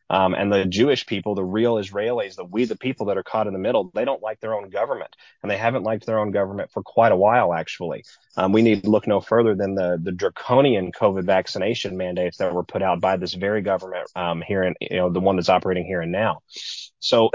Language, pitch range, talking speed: English, 100-115 Hz, 245 wpm